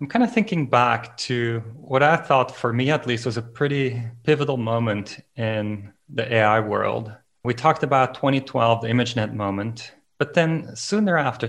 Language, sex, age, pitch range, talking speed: English, male, 30-49, 120-155 Hz, 170 wpm